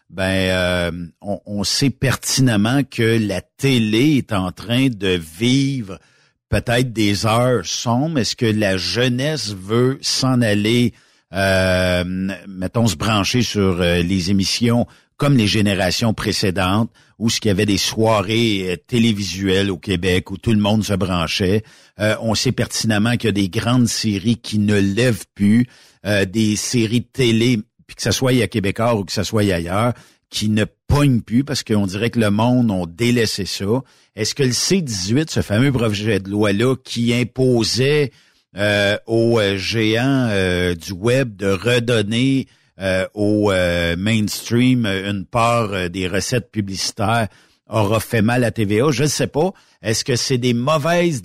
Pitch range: 100-120 Hz